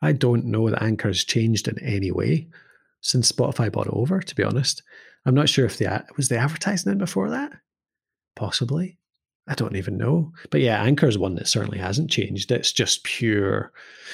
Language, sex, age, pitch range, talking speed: English, male, 30-49, 105-155 Hz, 190 wpm